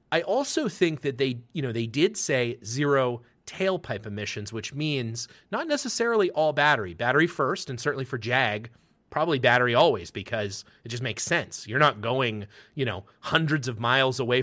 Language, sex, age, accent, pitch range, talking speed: English, male, 30-49, American, 115-150 Hz, 175 wpm